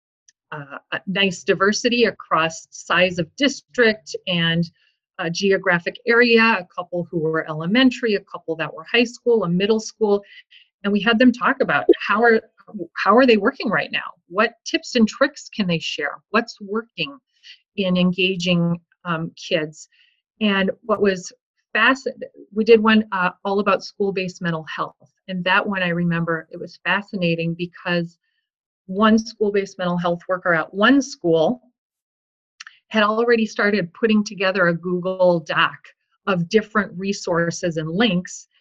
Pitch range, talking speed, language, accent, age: 175-230 Hz, 150 wpm, English, American, 30-49